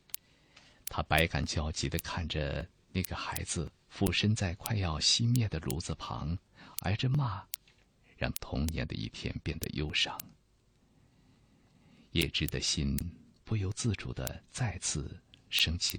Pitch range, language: 75-100 Hz, Chinese